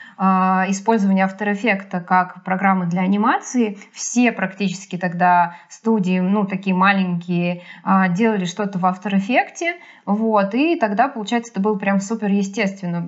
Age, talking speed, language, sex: 20-39, 130 wpm, Russian, female